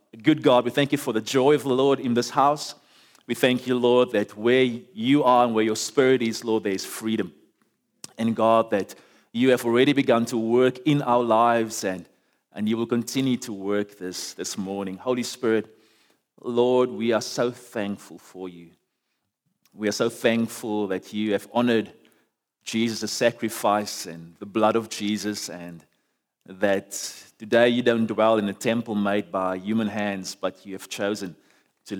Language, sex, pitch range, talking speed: English, male, 95-120 Hz, 180 wpm